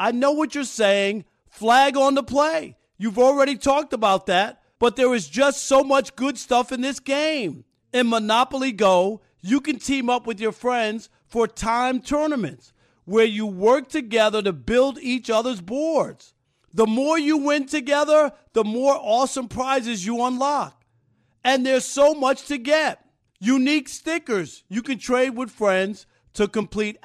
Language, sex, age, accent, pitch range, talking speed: English, male, 50-69, American, 210-275 Hz, 160 wpm